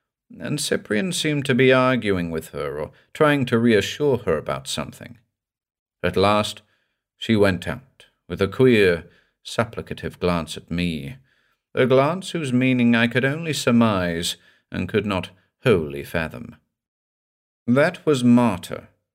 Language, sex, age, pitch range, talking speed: English, male, 50-69, 90-135 Hz, 130 wpm